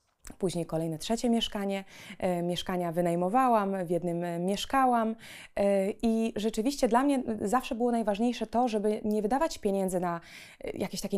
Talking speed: 130 wpm